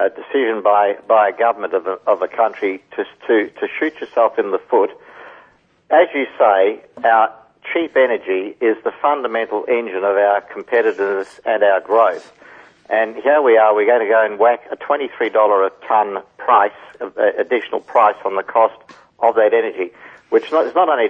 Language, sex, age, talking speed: English, male, 60-79, 175 wpm